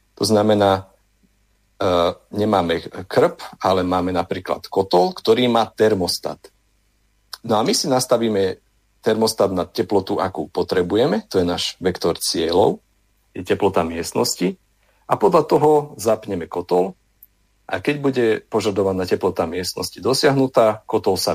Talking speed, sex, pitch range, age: 125 wpm, male, 95-115 Hz, 40-59